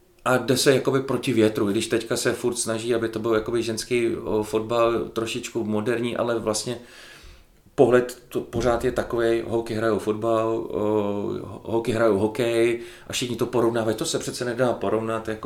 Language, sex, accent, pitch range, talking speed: Czech, male, native, 105-120 Hz, 165 wpm